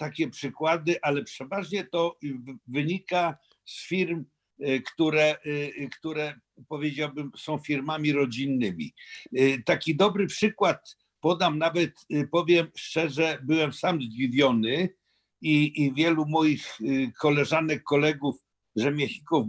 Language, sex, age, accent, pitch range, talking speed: Polish, male, 50-69, native, 140-165 Hz, 95 wpm